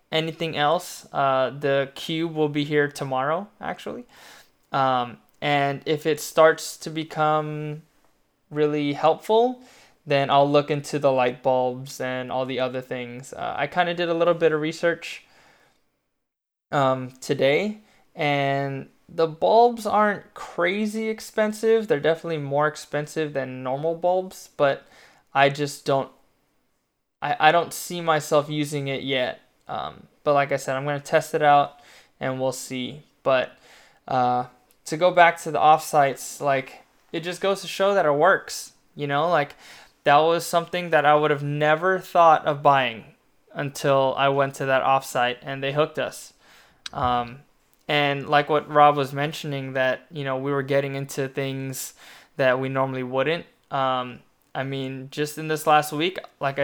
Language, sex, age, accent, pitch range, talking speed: English, male, 20-39, American, 135-160 Hz, 160 wpm